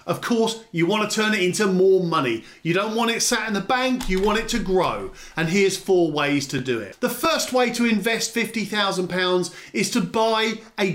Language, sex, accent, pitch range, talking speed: English, male, British, 165-225 Hz, 220 wpm